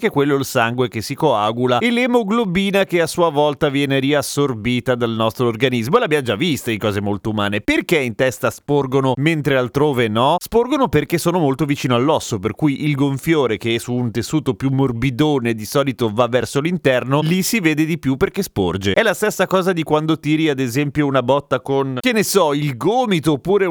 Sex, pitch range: male, 125-175 Hz